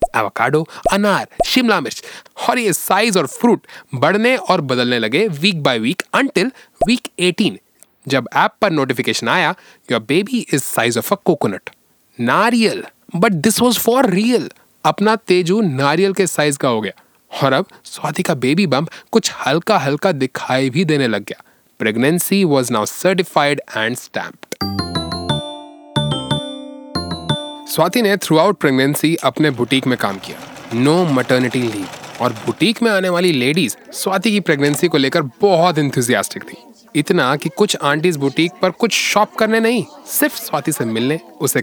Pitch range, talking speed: 135-200 Hz, 110 wpm